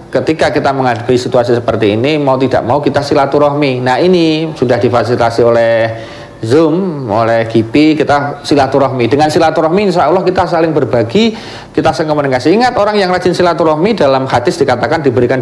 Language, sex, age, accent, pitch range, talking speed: Indonesian, male, 40-59, native, 130-155 Hz, 150 wpm